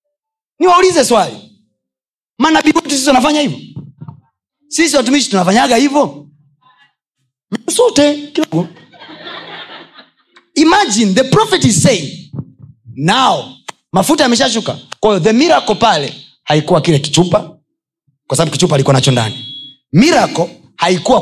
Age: 30-49